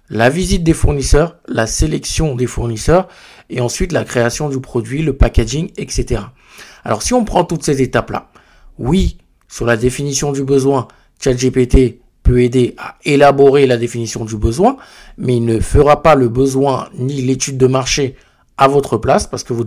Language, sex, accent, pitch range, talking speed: French, male, French, 120-150 Hz, 170 wpm